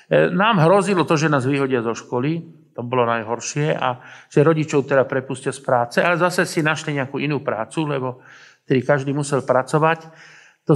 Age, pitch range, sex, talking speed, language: 50-69, 125-150 Hz, male, 175 wpm, Slovak